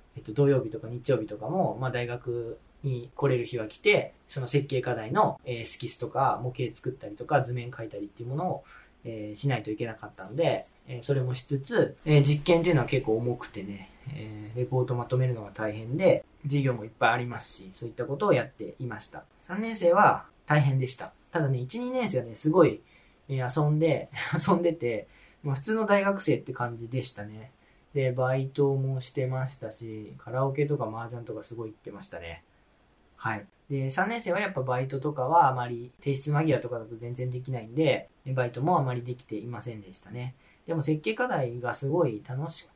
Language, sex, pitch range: Japanese, male, 120-155 Hz